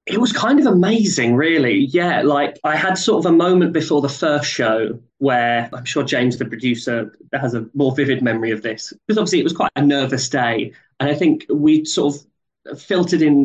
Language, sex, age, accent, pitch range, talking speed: English, male, 20-39, British, 120-145 Hz, 210 wpm